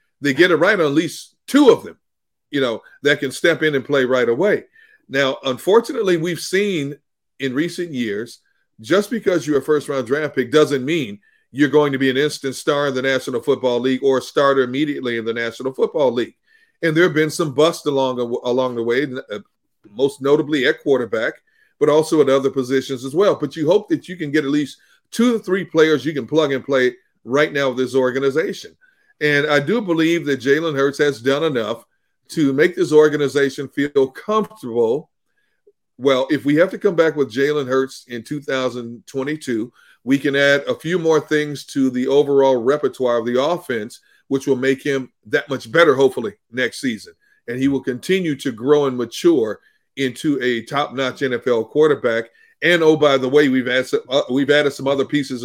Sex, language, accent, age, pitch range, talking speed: male, English, American, 40-59, 135-170 Hz, 195 wpm